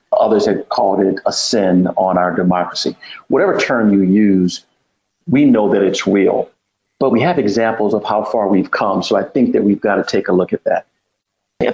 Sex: male